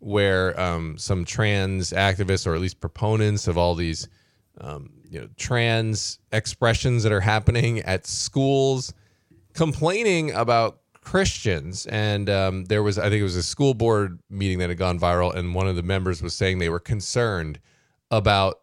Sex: male